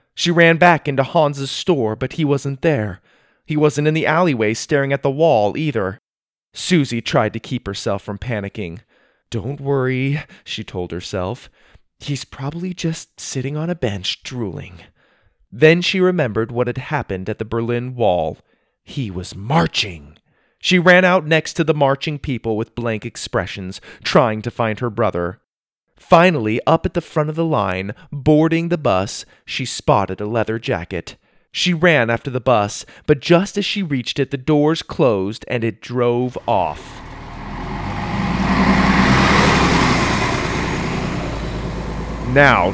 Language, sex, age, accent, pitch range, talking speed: English, male, 30-49, American, 110-155 Hz, 145 wpm